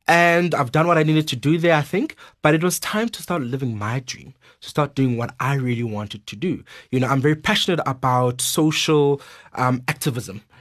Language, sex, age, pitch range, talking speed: English, male, 30-49, 120-155 Hz, 215 wpm